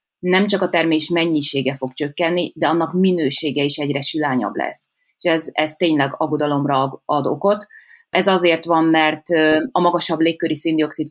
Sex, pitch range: female, 150-180 Hz